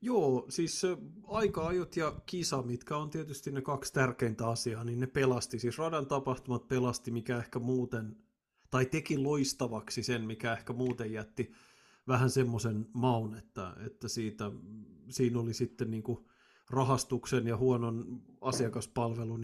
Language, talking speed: Finnish, 130 wpm